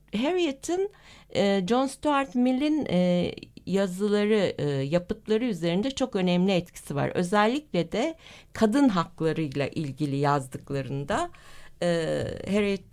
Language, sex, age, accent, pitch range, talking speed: Turkish, female, 60-79, native, 175-235 Hz, 85 wpm